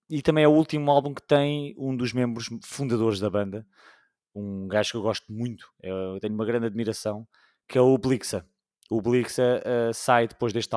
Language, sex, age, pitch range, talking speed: English, male, 20-39, 110-135 Hz, 195 wpm